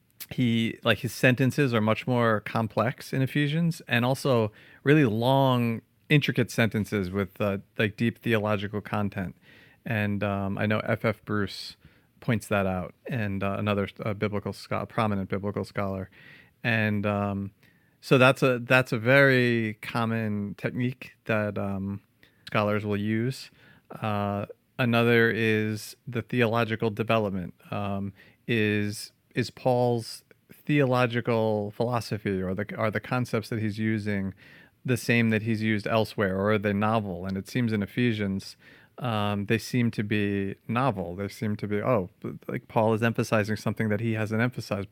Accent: American